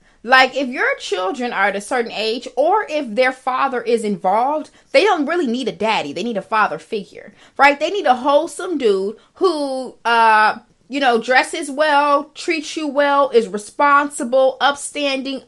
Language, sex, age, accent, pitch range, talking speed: English, female, 20-39, American, 225-285 Hz, 170 wpm